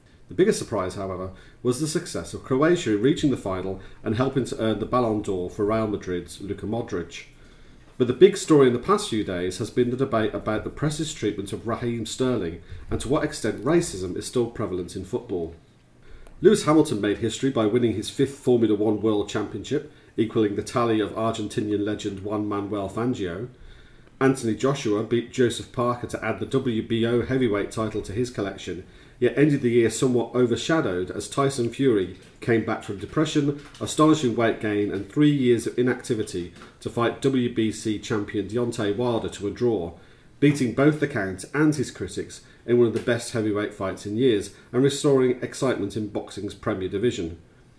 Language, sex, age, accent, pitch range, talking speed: English, male, 40-59, British, 105-125 Hz, 180 wpm